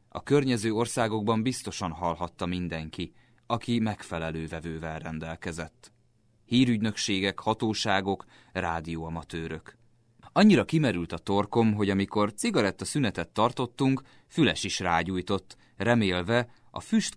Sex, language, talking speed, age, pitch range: male, Hungarian, 100 wpm, 30-49, 85-120 Hz